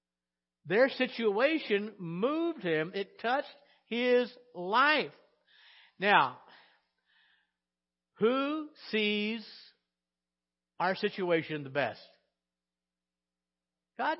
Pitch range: 160-235 Hz